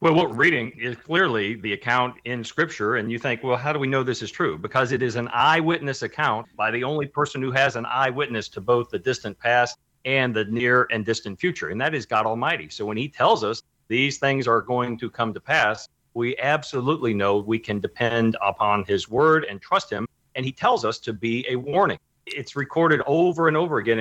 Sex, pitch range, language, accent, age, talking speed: male, 115-150 Hz, English, American, 40-59, 225 wpm